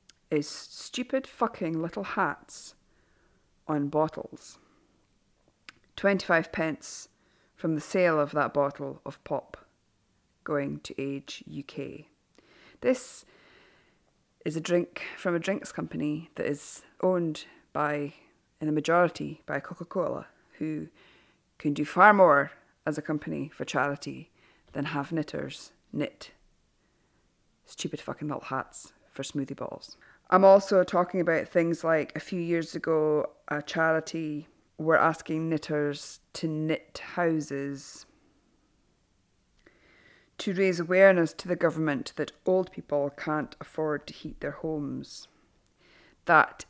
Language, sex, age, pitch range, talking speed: English, female, 40-59, 145-180 Hz, 120 wpm